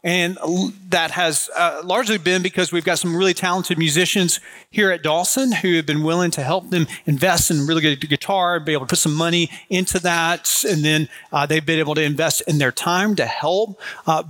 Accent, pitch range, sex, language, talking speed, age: American, 155-190 Hz, male, English, 210 wpm, 40-59